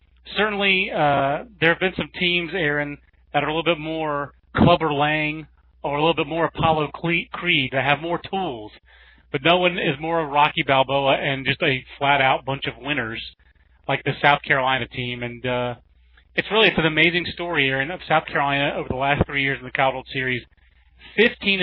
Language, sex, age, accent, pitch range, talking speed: English, male, 30-49, American, 130-160 Hz, 195 wpm